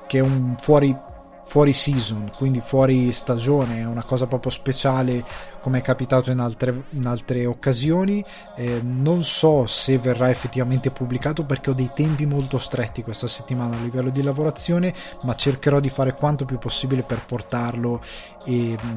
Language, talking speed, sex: Italian, 160 wpm, male